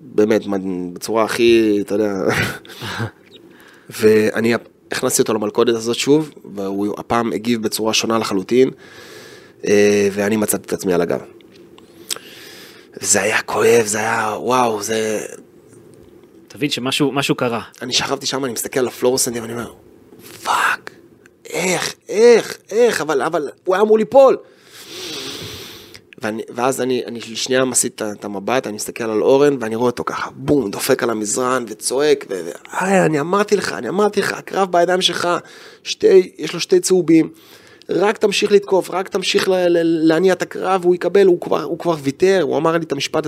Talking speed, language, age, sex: 145 wpm, Hebrew, 30-49, male